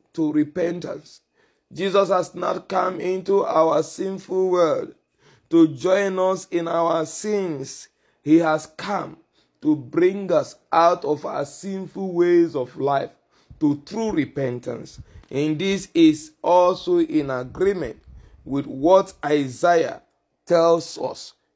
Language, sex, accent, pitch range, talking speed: English, male, Nigerian, 155-205 Hz, 120 wpm